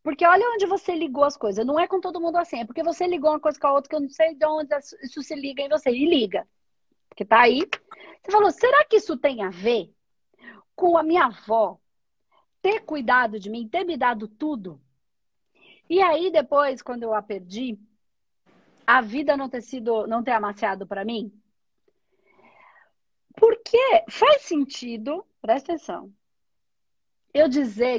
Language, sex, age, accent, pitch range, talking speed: Portuguese, female, 40-59, Brazilian, 230-335 Hz, 175 wpm